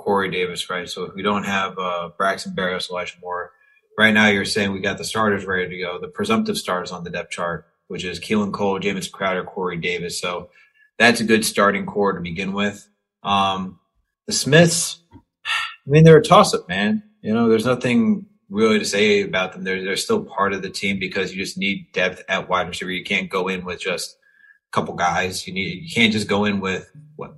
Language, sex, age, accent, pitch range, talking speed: English, male, 30-49, American, 95-160 Hz, 220 wpm